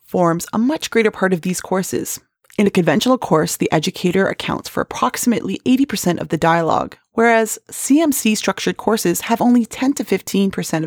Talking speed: 165 wpm